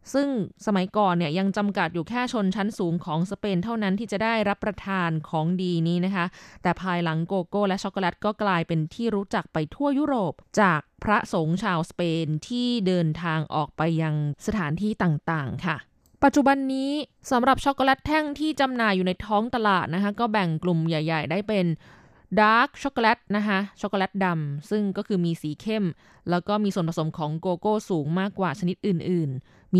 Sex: female